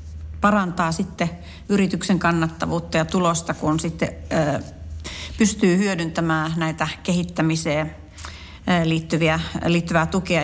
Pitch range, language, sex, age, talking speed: 165-190 Hz, Finnish, female, 40-59, 85 wpm